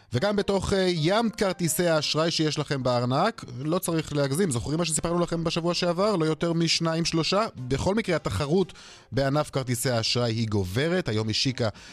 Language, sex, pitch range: Hebrew, male, 90-135 Hz